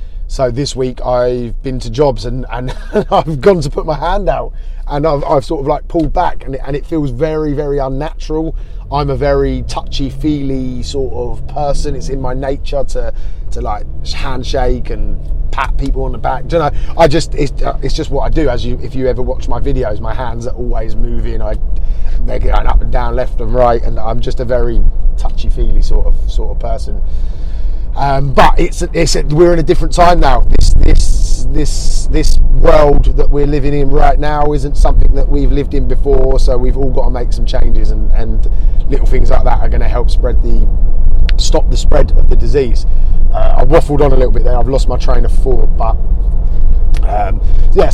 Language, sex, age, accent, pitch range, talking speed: English, male, 30-49, British, 105-140 Hz, 210 wpm